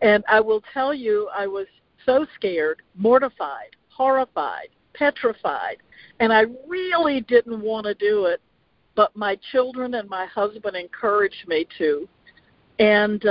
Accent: American